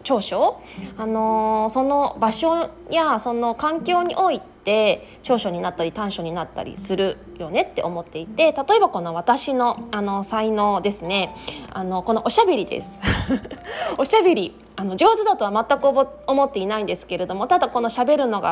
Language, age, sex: Japanese, 20-39, female